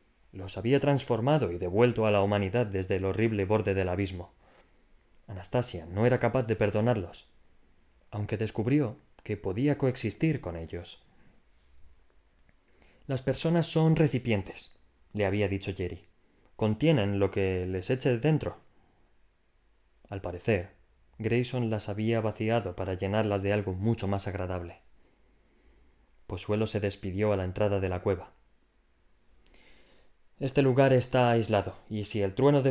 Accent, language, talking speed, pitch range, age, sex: Spanish, Spanish, 135 wpm, 90-115 Hz, 20-39, male